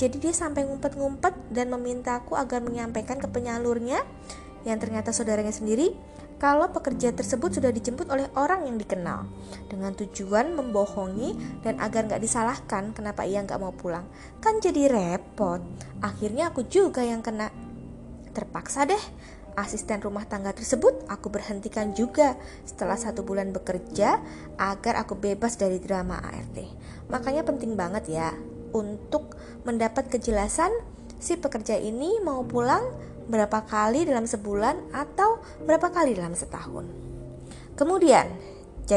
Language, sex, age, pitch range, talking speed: Indonesian, female, 20-39, 205-280 Hz, 130 wpm